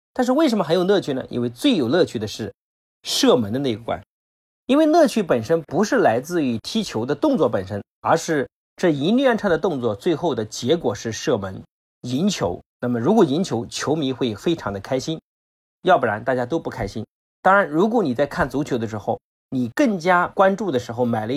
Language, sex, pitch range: Chinese, male, 115-165 Hz